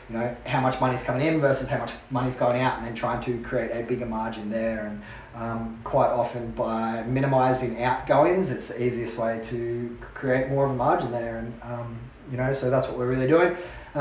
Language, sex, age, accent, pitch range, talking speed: English, male, 20-39, Australian, 120-135 Hz, 220 wpm